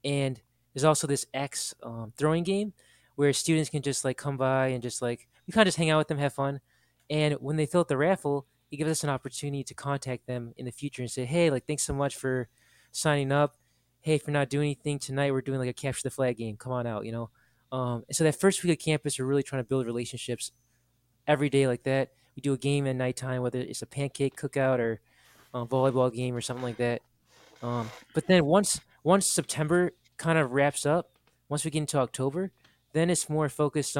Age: 20-39